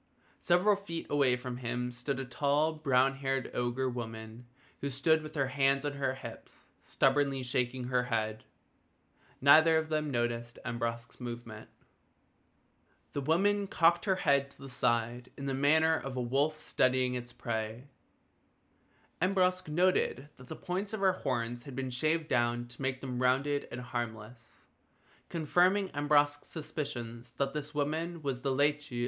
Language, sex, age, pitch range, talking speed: English, male, 20-39, 120-150 Hz, 150 wpm